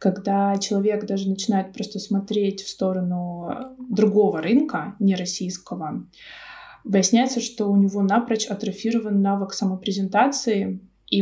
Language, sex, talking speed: Russian, female, 105 wpm